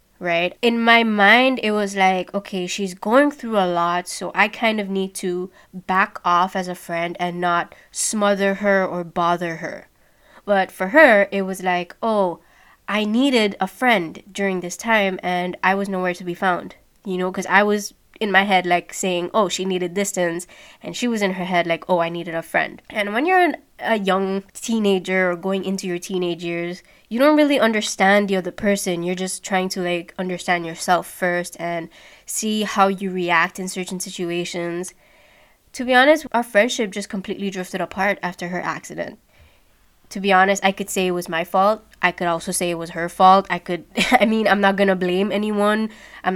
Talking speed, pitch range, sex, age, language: 200 wpm, 180-205 Hz, female, 20-39, English